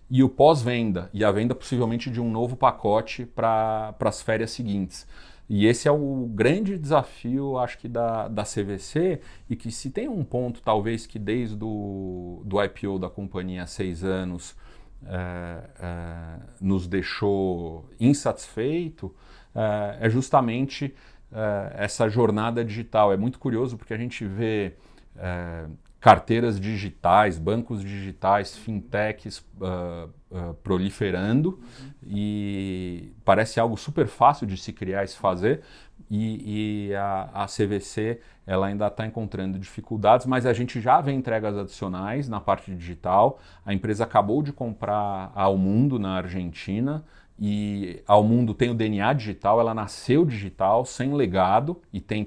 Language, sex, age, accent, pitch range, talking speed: English, male, 40-59, Brazilian, 95-120 Hz, 135 wpm